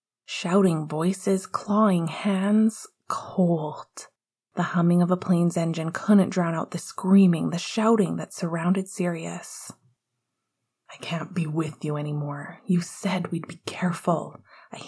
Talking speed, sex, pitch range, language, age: 135 wpm, female, 170-215 Hz, English, 20-39